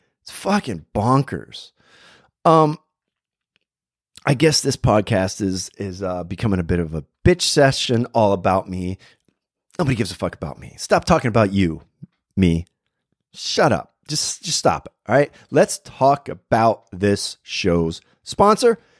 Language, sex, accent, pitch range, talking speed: English, male, American, 105-175 Hz, 140 wpm